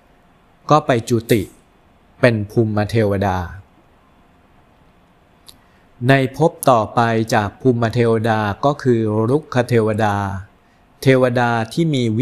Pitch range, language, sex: 95-125 Hz, Thai, male